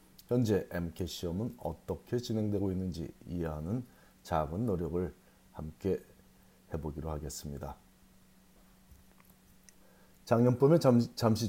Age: 40-59